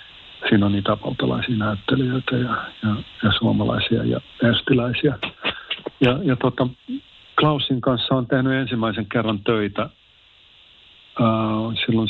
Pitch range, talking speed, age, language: 100-120 Hz, 110 wpm, 50-69, Finnish